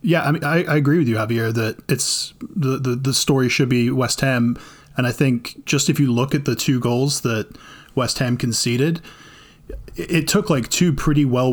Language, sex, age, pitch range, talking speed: English, male, 20-39, 115-135 Hz, 215 wpm